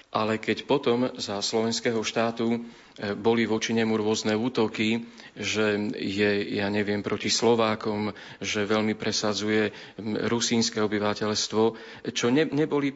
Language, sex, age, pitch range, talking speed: Slovak, male, 40-59, 105-115 Hz, 115 wpm